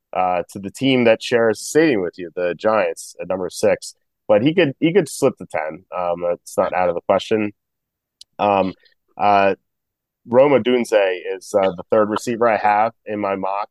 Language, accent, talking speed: English, American, 195 wpm